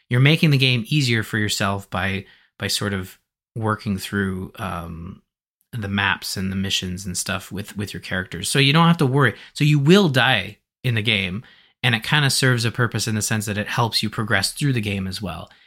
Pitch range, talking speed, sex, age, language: 100-125 Hz, 220 wpm, male, 20-39, English